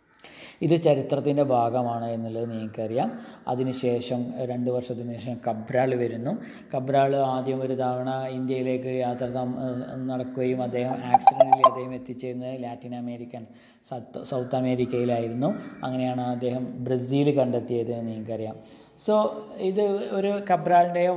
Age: 20-39